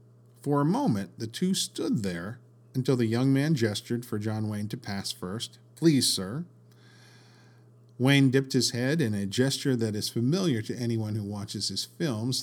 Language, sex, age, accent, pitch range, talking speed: English, male, 50-69, American, 100-125 Hz, 175 wpm